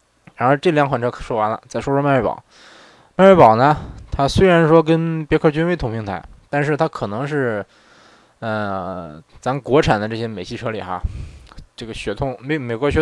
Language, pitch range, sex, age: Chinese, 110-150 Hz, male, 20-39